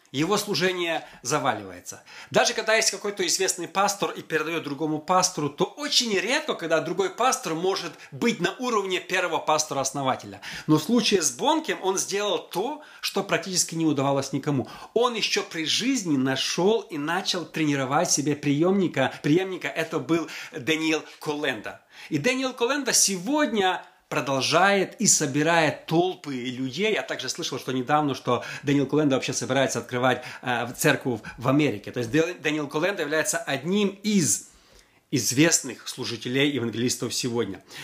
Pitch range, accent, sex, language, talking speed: 140-195 Hz, native, male, Russian, 140 wpm